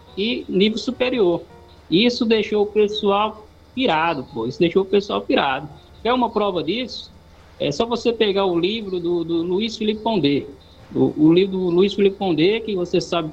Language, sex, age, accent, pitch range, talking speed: Portuguese, male, 20-39, Brazilian, 160-205 Hz, 170 wpm